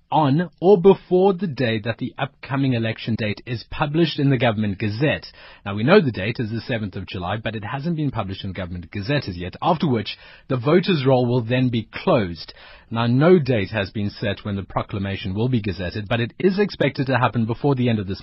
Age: 30-49